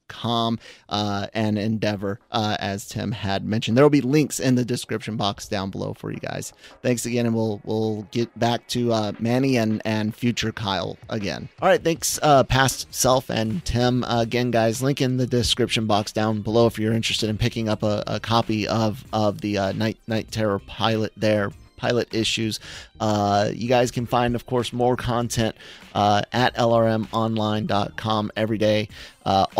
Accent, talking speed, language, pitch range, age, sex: American, 180 wpm, English, 105-125 Hz, 30-49, male